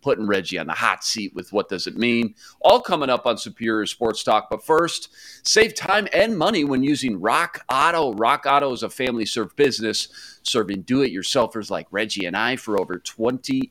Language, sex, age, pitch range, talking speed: English, male, 40-59, 110-140 Hz, 200 wpm